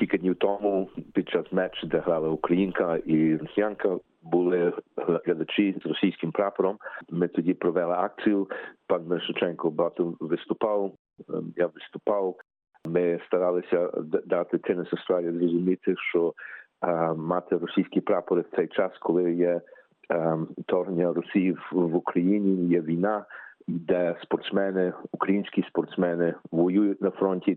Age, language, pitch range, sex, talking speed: 50-69, Ukrainian, 85-95 Hz, male, 120 wpm